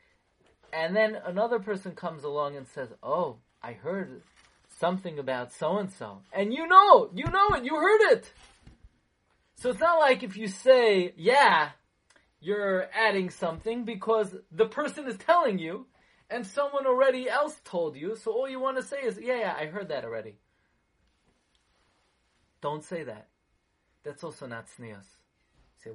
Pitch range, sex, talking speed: 150-220 Hz, male, 155 wpm